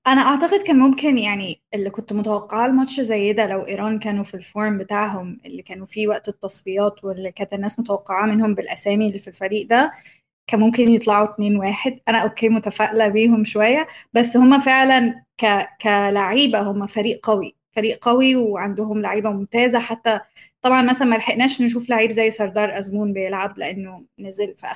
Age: 20-39